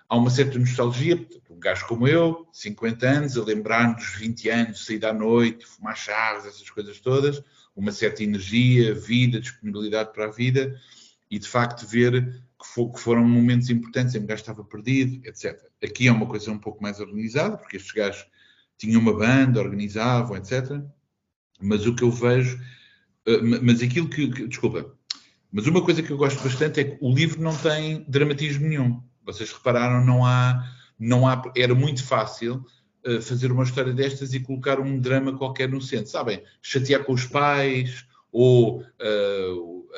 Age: 50-69